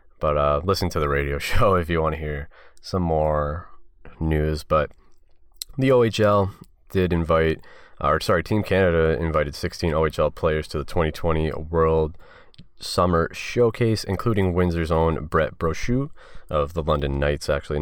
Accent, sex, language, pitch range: American, male, English, 80-95 Hz